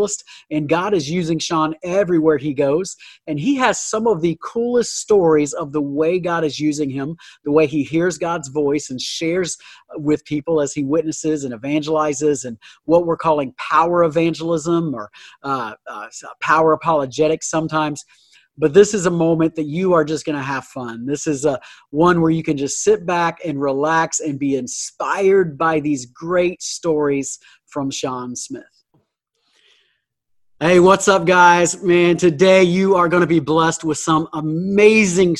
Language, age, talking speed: English, 40-59, 170 wpm